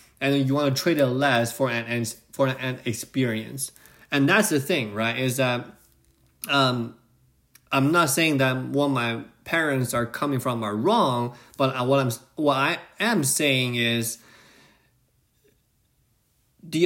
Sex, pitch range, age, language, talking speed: male, 115-135 Hz, 20-39, English, 150 wpm